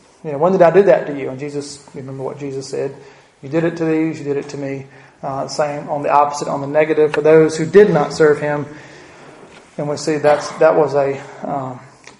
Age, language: 30-49, English